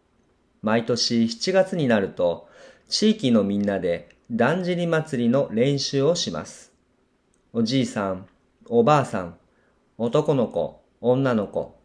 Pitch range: 115-160 Hz